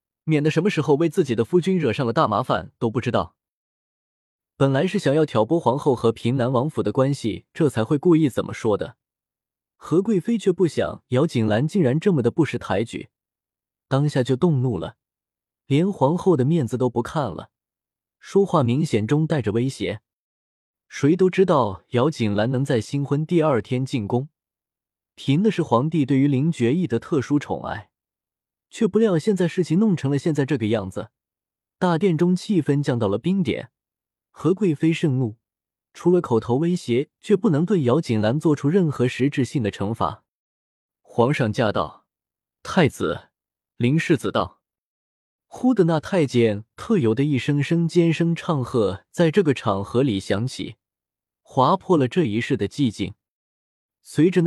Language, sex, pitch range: Chinese, male, 115-165 Hz